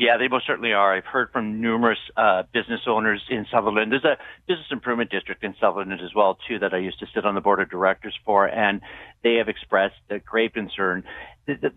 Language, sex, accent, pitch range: English, male, American, 105-135 Hz